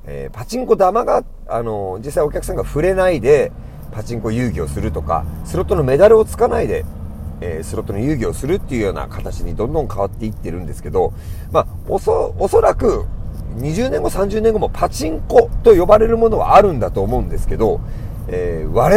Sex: male